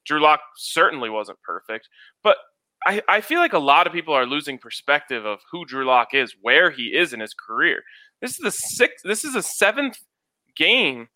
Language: English